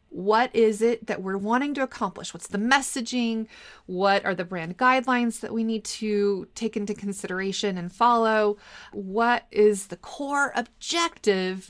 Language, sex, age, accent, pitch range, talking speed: English, female, 30-49, American, 200-255 Hz, 155 wpm